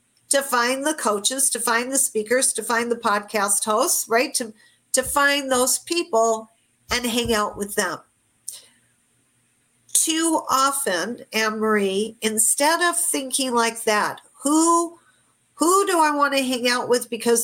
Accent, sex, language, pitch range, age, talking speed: American, female, English, 220-290 Hz, 50-69, 145 wpm